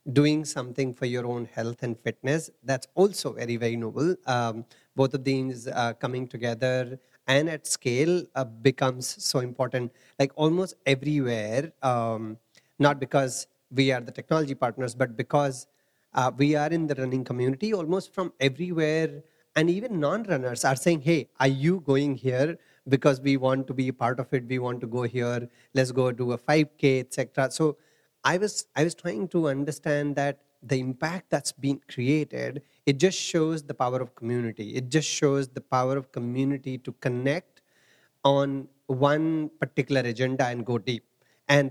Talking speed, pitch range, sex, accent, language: 170 wpm, 130-150 Hz, male, Indian, English